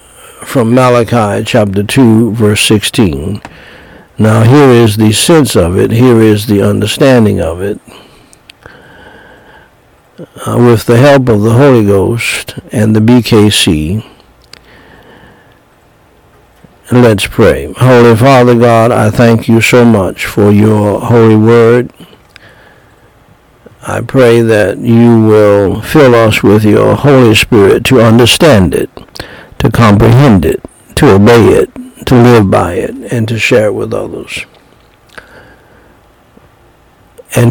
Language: English